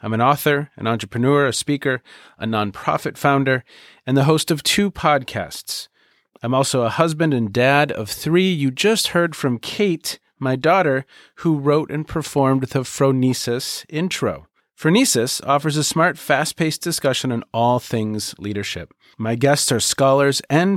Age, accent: 40-59, American